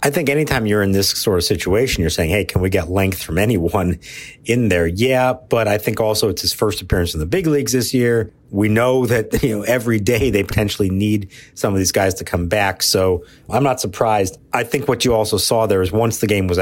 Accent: American